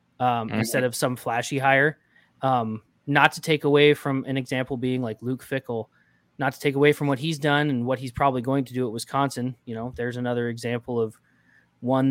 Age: 20-39